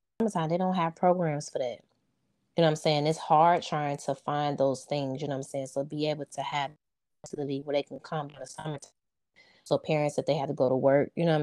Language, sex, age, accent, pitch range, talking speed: English, female, 20-39, American, 145-160 Hz, 245 wpm